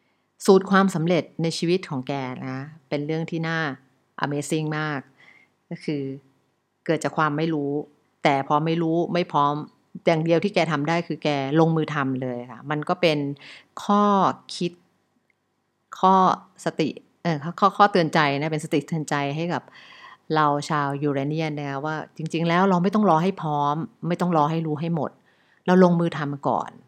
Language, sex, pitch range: English, female, 145-170 Hz